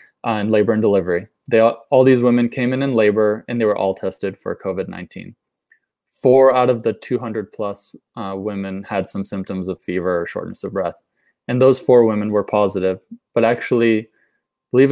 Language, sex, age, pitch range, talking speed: English, male, 20-39, 100-120 Hz, 190 wpm